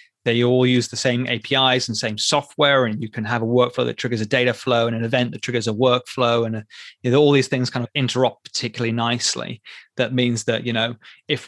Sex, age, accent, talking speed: male, 20-39, British, 235 wpm